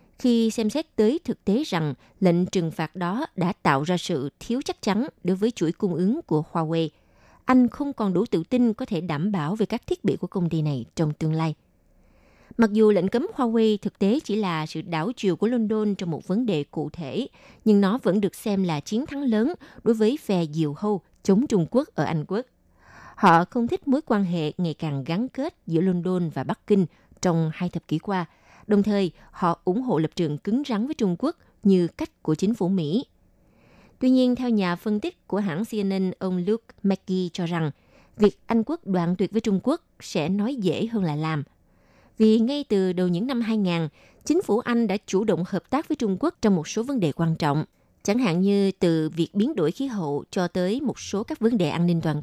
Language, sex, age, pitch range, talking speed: Vietnamese, female, 20-39, 170-225 Hz, 225 wpm